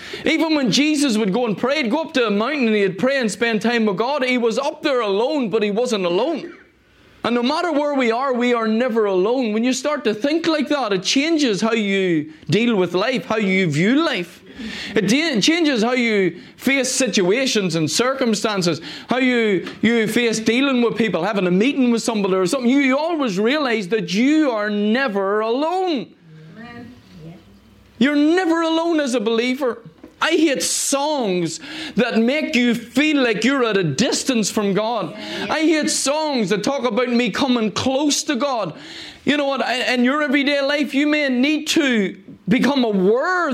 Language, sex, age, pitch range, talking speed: English, male, 30-49, 205-275 Hz, 185 wpm